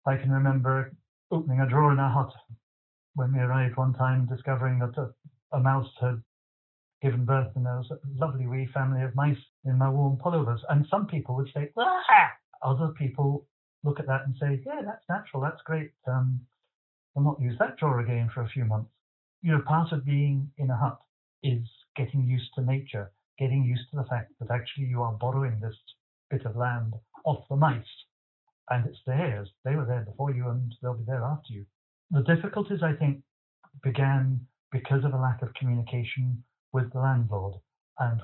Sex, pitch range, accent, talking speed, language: male, 120-135 Hz, British, 195 wpm, English